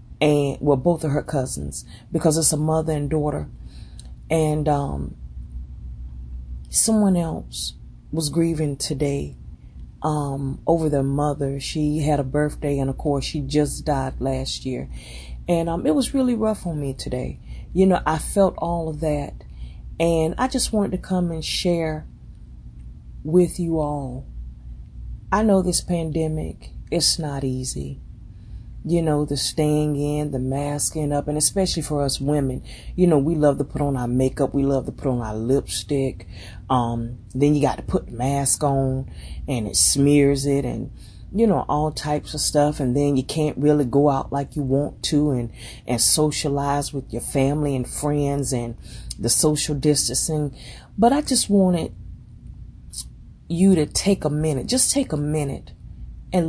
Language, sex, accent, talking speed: English, female, American, 165 wpm